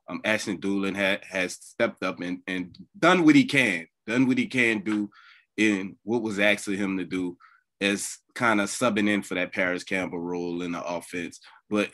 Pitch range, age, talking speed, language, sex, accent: 95-115 Hz, 20-39, 195 wpm, English, male, American